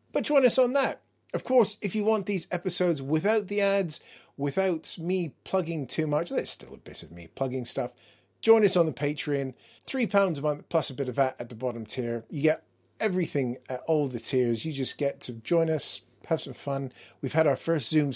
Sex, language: male, English